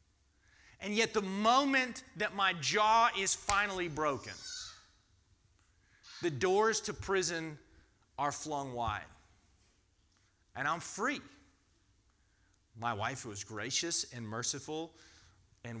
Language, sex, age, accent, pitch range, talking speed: English, male, 30-49, American, 95-150 Hz, 105 wpm